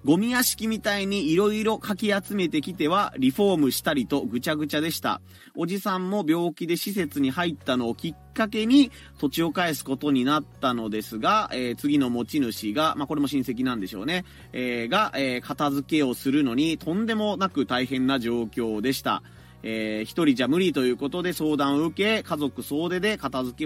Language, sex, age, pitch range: Japanese, male, 30-49, 130-180 Hz